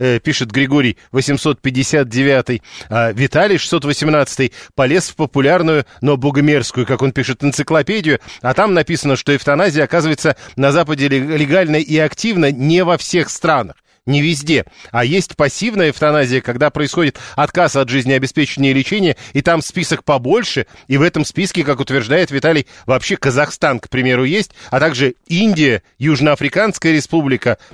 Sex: male